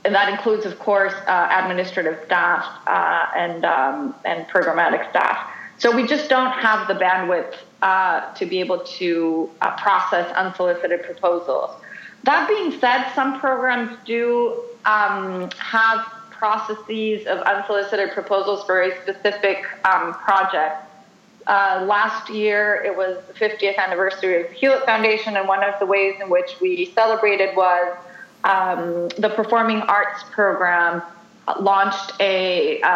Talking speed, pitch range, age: 140 wpm, 185-215 Hz, 30-49